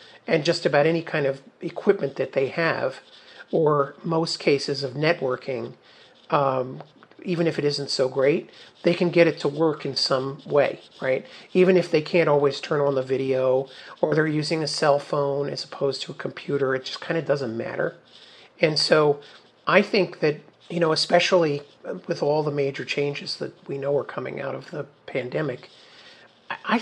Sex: male